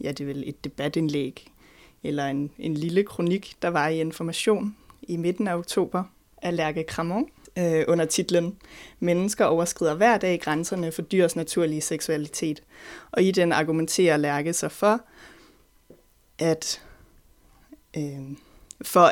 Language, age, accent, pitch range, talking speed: Danish, 20-39, native, 155-185 Hz, 130 wpm